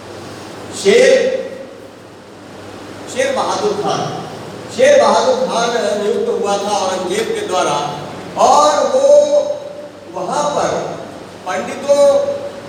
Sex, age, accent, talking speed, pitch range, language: male, 50-69, native, 90 wpm, 195-280 Hz, Hindi